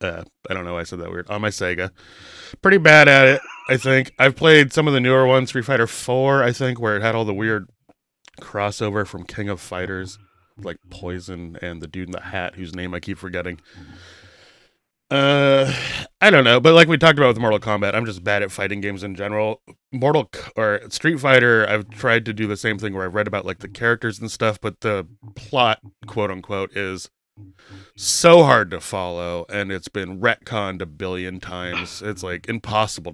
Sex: male